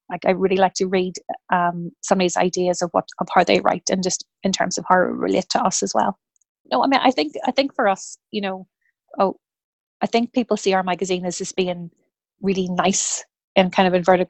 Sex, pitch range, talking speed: female, 185-215 Hz, 225 wpm